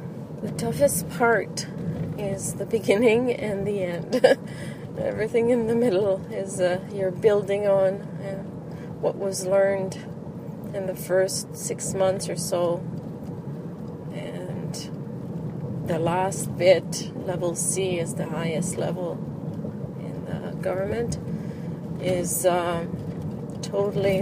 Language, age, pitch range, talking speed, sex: English, 30-49, 165-190 Hz, 110 wpm, female